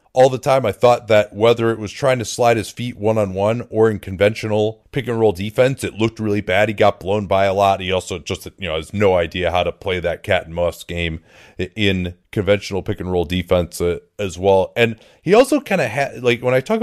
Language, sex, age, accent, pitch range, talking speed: English, male, 30-49, American, 100-125 Hz, 225 wpm